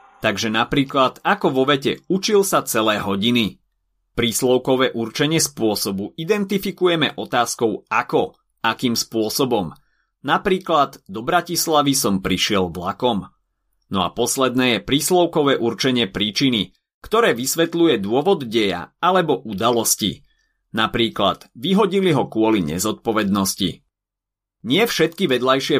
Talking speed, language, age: 100 wpm, Slovak, 30-49